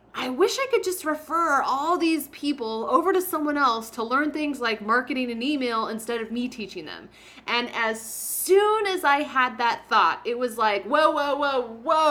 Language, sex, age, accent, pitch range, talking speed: English, female, 30-49, American, 210-290 Hz, 195 wpm